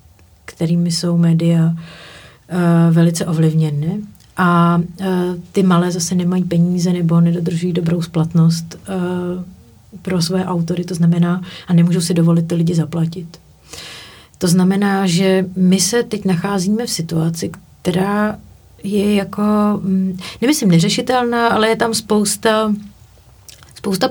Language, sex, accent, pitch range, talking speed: Czech, female, native, 170-200 Hz, 125 wpm